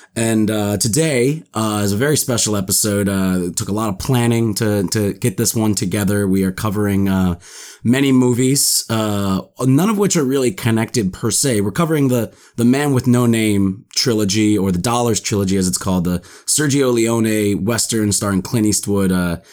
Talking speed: 185 wpm